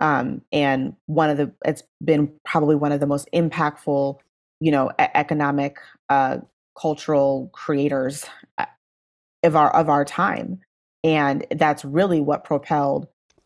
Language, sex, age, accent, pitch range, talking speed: English, female, 30-49, American, 140-170 Hz, 130 wpm